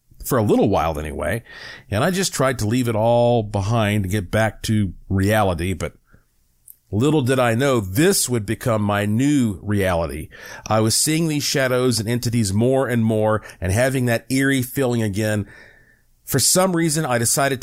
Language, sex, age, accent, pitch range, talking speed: English, male, 50-69, American, 100-135 Hz, 175 wpm